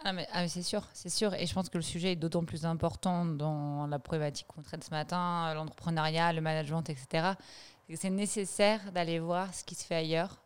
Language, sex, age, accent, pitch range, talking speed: French, female, 20-39, French, 160-190 Hz, 225 wpm